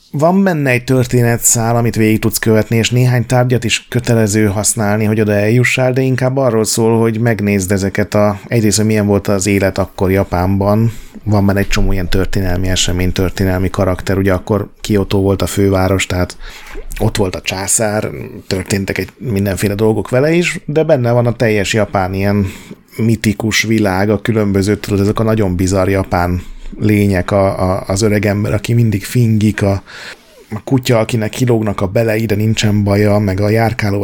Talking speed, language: 170 wpm, Hungarian